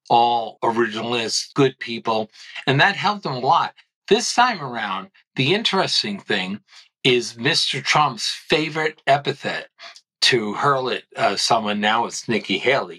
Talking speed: 140 wpm